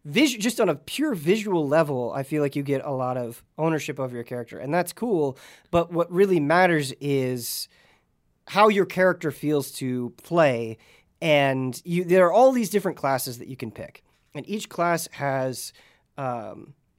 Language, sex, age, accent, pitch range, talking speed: English, male, 30-49, American, 130-180 Hz, 175 wpm